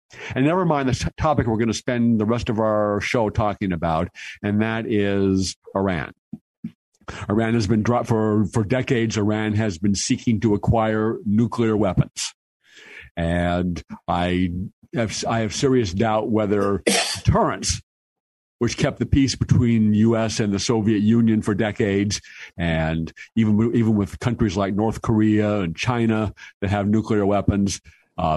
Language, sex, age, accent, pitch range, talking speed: English, male, 50-69, American, 100-115 Hz, 150 wpm